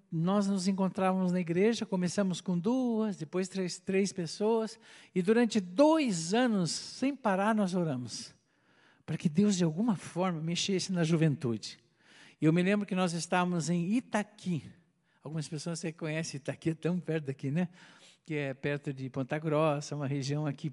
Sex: male